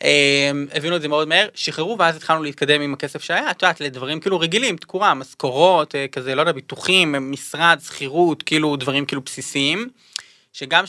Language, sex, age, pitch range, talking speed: Hebrew, male, 20-39, 140-175 Hz, 165 wpm